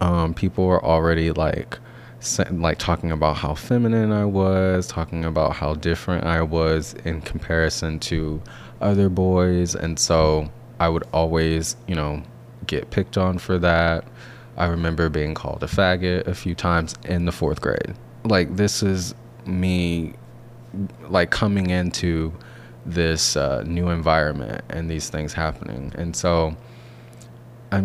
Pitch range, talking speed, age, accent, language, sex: 80-105 Hz, 145 wpm, 20-39, American, English, male